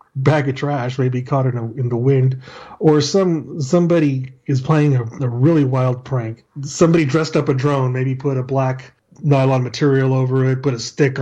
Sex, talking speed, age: male, 195 wpm, 30-49